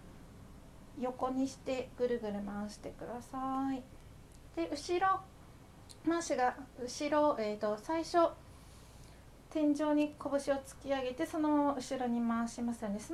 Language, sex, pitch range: Japanese, female, 235-300 Hz